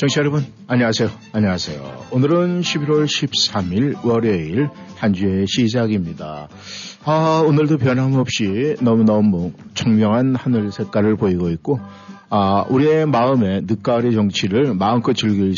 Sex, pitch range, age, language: male, 100-130 Hz, 50-69, Korean